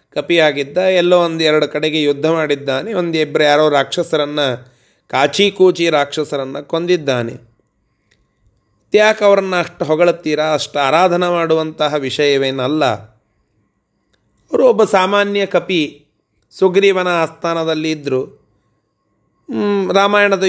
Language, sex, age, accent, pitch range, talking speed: Kannada, male, 30-49, native, 125-165 Hz, 85 wpm